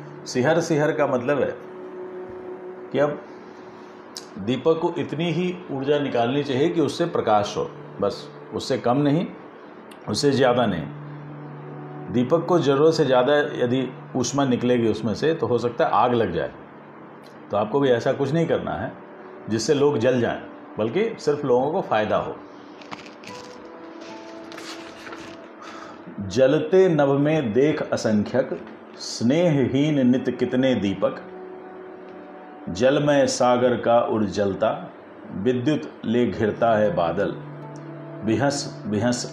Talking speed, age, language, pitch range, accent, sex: 120 wpm, 50-69, Hindi, 110-150 Hz, native, male